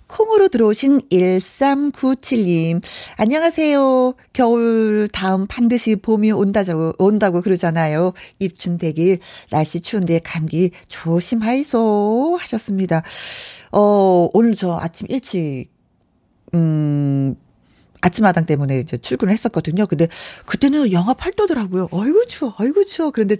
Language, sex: Korean, female